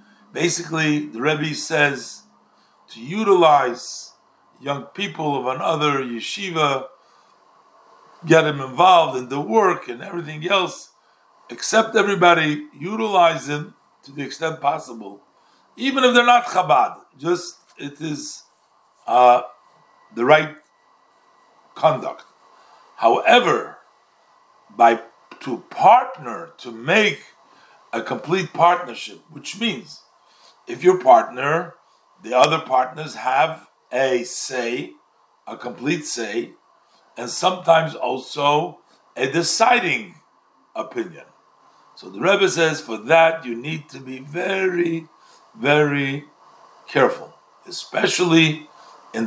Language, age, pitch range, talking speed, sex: English, 50-69, 135-175 Hz, 100 wpm, male